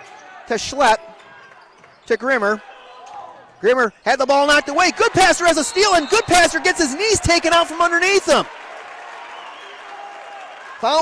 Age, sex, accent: 40-59, male, American